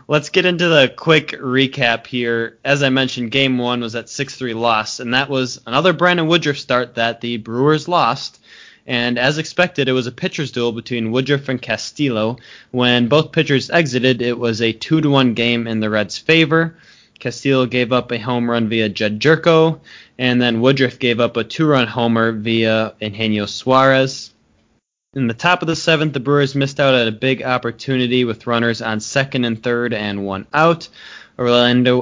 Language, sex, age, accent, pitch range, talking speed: English, male, 20-39, American, 110-135 Hz, 180 wpm